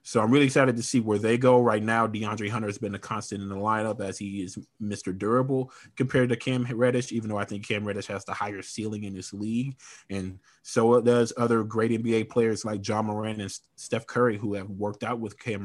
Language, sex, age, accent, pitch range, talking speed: English, male, 20-39, American, 100-120 Hz, 235 wpm